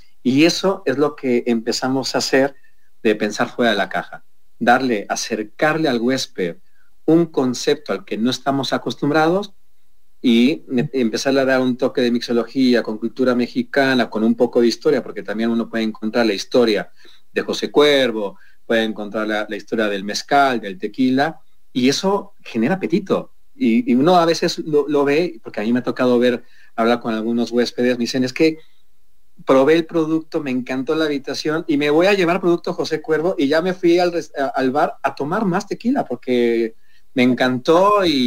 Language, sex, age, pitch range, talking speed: English, male, 40-59, 120-155 Hz, 185 wpm